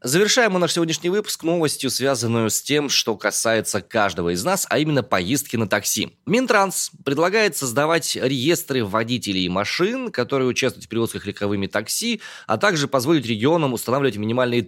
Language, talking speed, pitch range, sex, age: Russian, 155 wpm, 105-165 Hz, male, 20-39